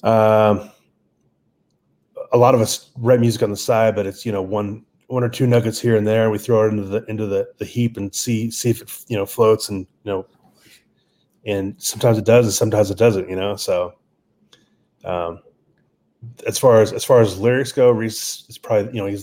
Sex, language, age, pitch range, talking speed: male, English, 30-49, 100-115 Hz, 210 wpm